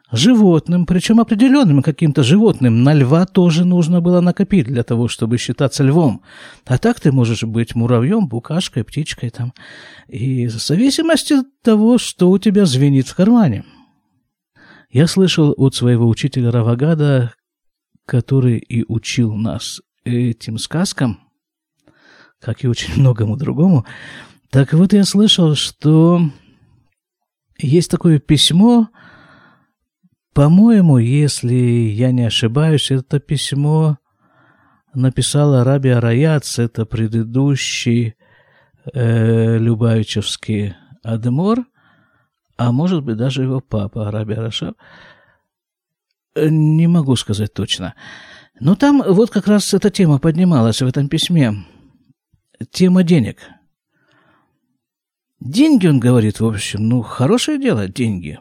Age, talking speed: 50-69, 115 wpm